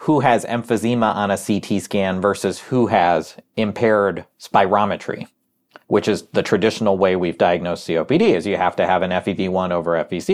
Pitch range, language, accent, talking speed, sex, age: 100-125 Hz, English, American, 170 wpm, male, 40-59